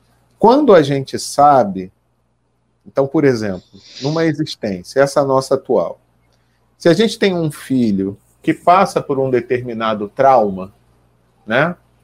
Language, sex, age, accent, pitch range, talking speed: Portuguese, male, 40-59, Brazilian, 110-170 Hz, 125 wpm